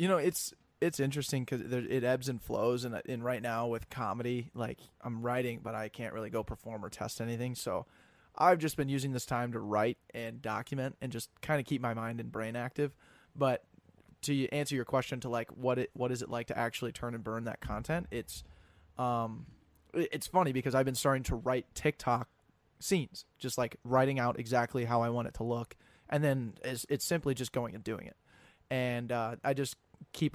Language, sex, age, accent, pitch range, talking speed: English, male, 20-39, American, 115-130 Hz, 210 wpm